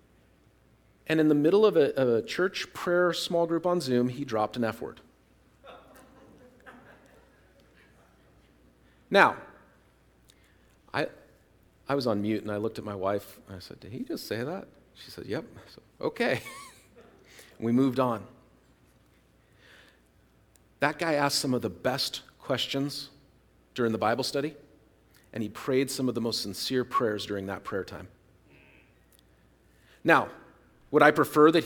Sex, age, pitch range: male, 40-59, 105-145 Hz